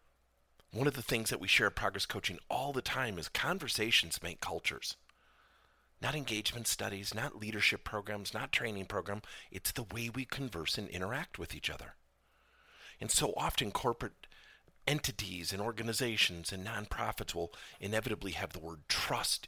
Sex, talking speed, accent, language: male, 155 wpm, American, English